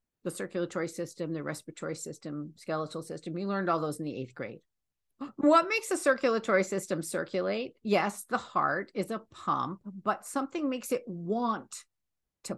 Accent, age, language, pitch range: American, 50-69, English, 180-255 Hz